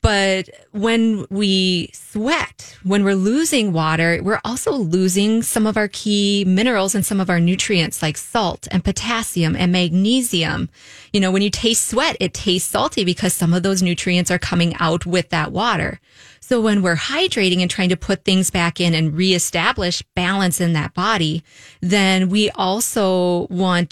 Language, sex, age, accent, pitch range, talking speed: English, female, 20-39, American, 175-215 Hz, 170 wpm